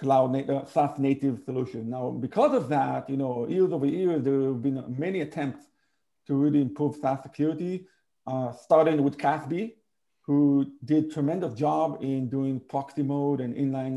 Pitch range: 130-155 Hz